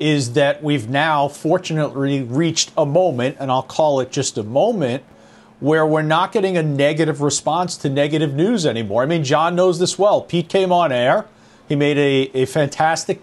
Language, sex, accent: English, male, American